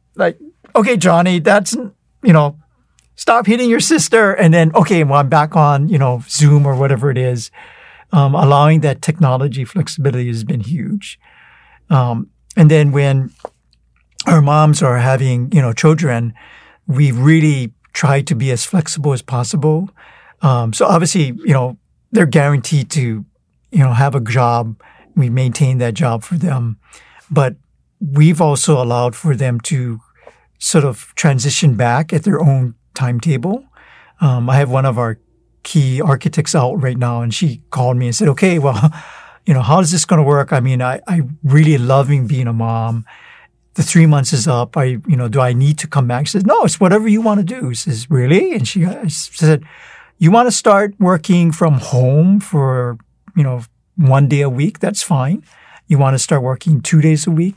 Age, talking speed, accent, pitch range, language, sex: 50-69, 185 wpm, American, 130-165 Hz, English, male